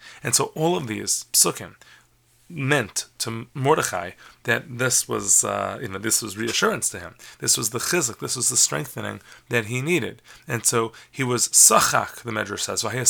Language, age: English, 30-49